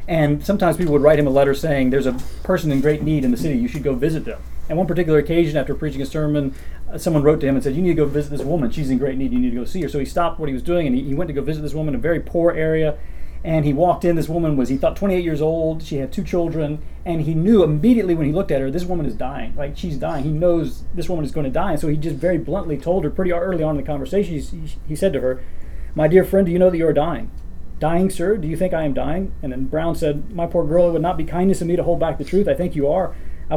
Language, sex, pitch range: English, male, 145-180 Hz